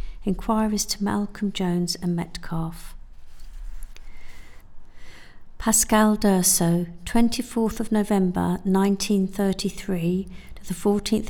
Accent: British